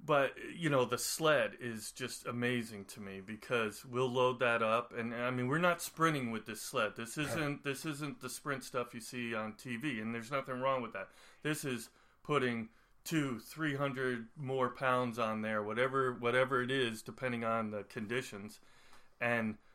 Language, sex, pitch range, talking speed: English, male, 115-135 Hz, 180 wpm